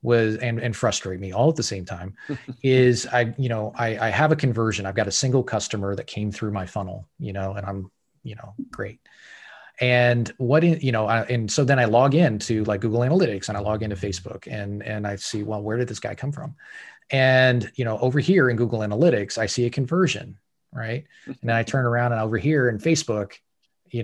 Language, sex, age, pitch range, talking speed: English, male, 30-49, 110-130 Hz, 220 wpm